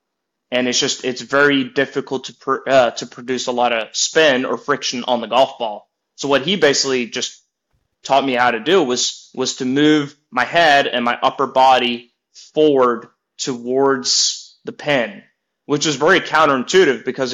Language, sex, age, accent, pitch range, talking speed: English, male, 20-39, American, 125-145 Hz, 175 wpm